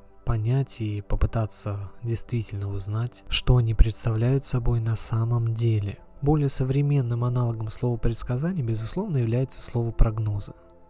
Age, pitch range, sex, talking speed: 20-39, 110-135 Hz, male, 115 wpm